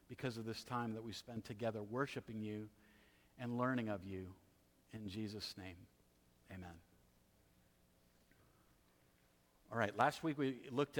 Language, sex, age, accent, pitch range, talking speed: English, male, 50-69, American, 110-140 Hz, 130 wpm